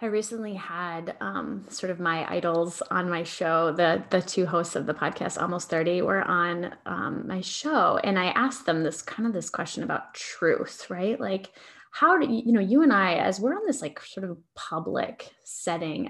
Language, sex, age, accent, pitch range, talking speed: English, female, 10-29, American, 180-230 Hz, 205 wpm